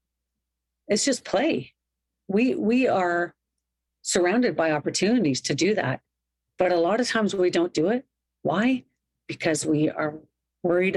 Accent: American